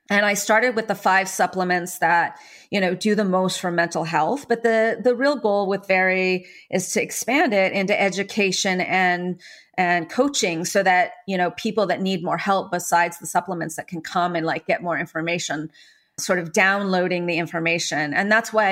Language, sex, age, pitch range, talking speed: English, female, 30-49, 175-215 Hz, 190 wpm